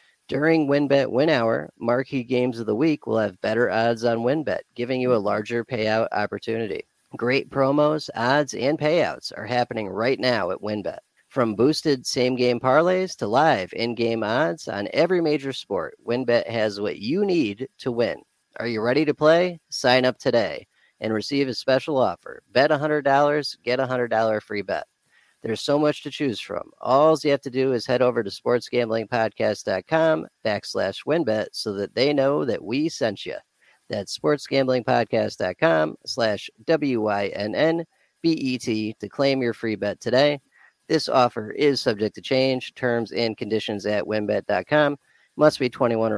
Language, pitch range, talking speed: English, 110-140 Hz, 155 wpm